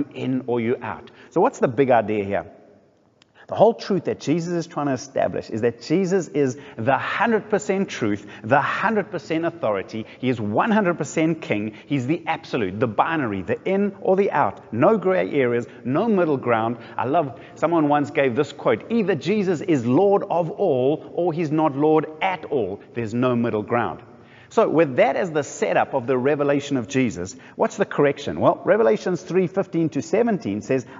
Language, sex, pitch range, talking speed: English, male, 130-180 Hz, 185 wpm